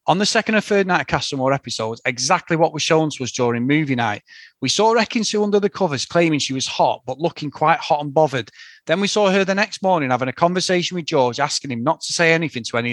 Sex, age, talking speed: male, 30-49, 250 wpm